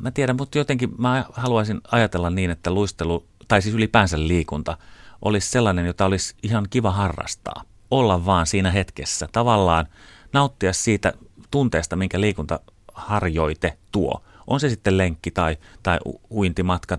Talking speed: 140 wpm